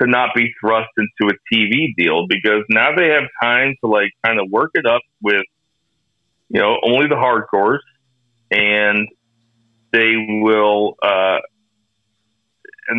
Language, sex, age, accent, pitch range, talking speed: English, male, 40-59, American, 105-135 Hz, 145 wpm